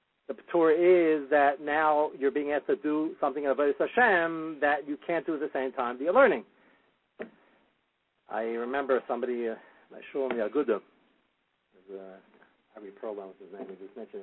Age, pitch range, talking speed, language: 50-69, 115-170 Hz, 160 wpm, English